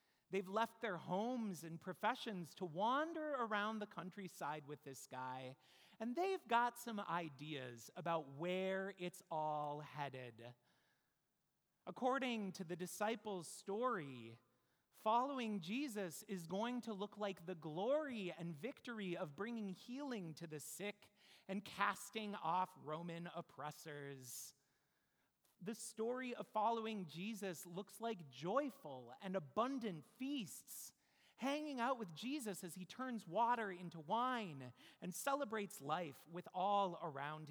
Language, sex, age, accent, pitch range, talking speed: English, male, 30-49, American, 160-225 Hz, 125 wpm